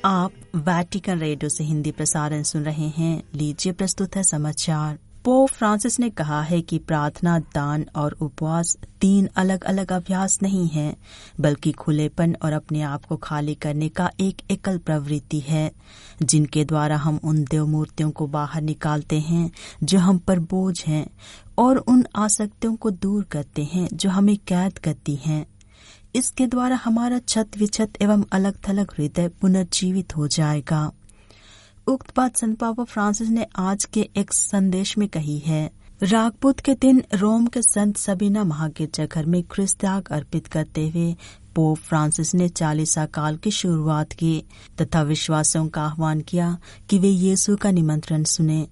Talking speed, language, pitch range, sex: 155 wpm, Hindi, 155-195 Hz, female